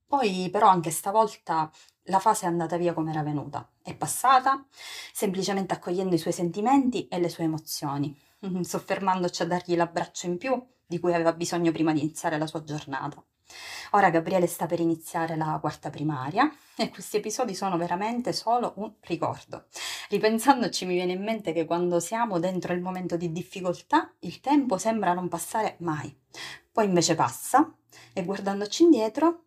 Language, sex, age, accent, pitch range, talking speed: Italian, female, 20-39, native, 165-205 Hz, 165 wpm